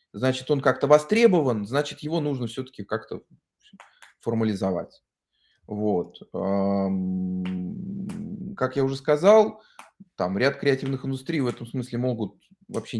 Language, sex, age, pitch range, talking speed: Russian, male, 20-39, 105-145 Hz, 110 wpm